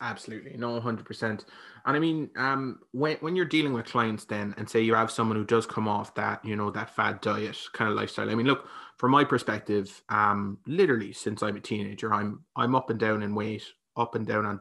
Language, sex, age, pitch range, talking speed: English, male, 20-39, 105-120 Hz, 230 wpm